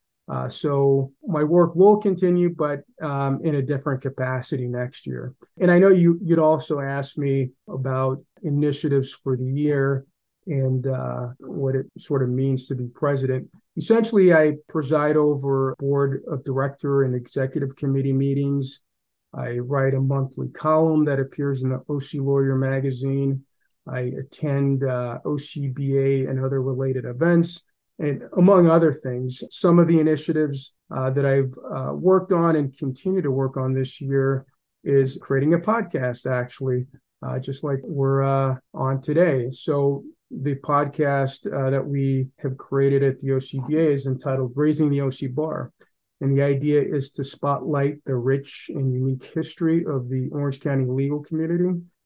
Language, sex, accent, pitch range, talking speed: English, male, American, 135-150 Hz, 155 wpm